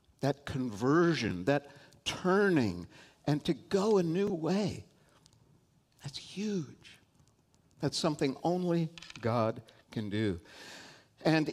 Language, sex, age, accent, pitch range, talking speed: English, male, 60-79, American, 105-145 Hz, 100 wpm